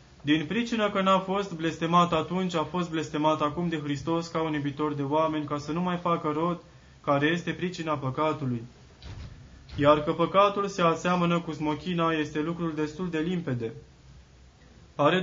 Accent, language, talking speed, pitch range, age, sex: native, Romanian, 160 wpm, 150-175 Hz, 20-39, male